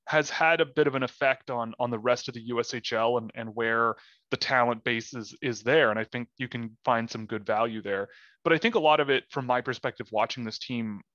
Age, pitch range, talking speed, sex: 30-49, 120-145 Hz, 250 wpm, male